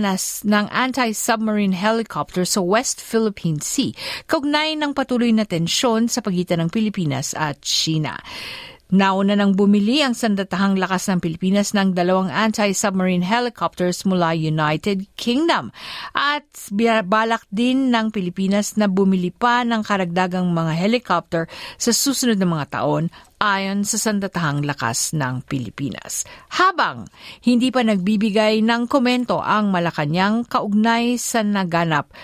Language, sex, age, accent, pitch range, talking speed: Filipino, female, 50-69, native, 175-230 Hz, 125 wpm